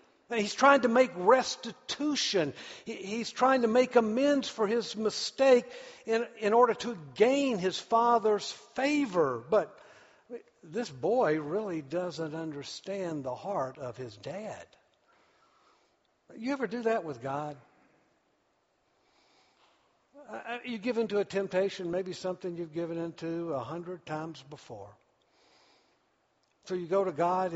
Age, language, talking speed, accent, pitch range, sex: 60-79, English, 125 wpm, American, 175-240 Hz, male